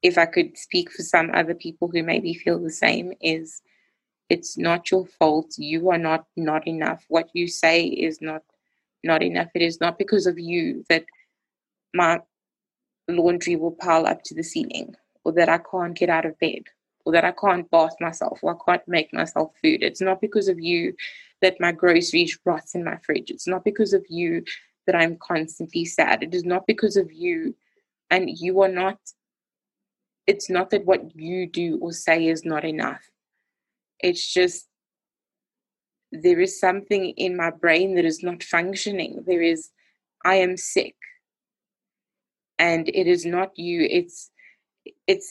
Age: 20-39